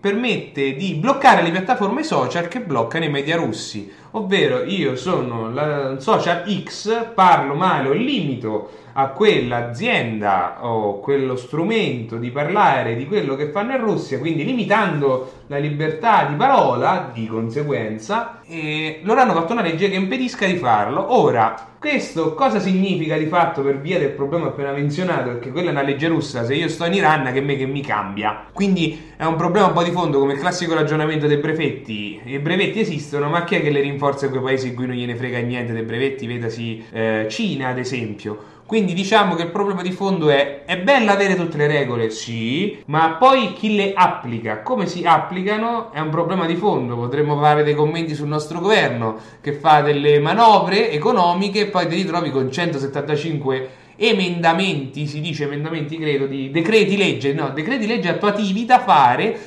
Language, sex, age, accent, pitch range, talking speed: English, male, 30-49, Italian, 135-190 Hz, 180 wpm